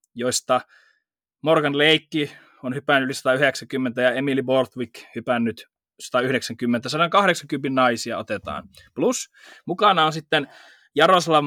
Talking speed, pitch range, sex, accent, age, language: 105 wpm, 130-160 Hz, male, native, 20-39, Finnish